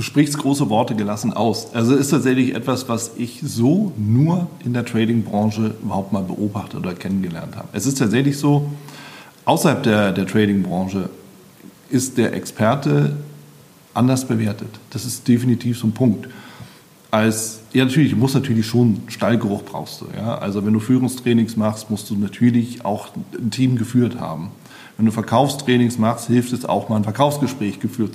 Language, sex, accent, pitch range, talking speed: German, male, German, 105-125 Hz, 165 wpm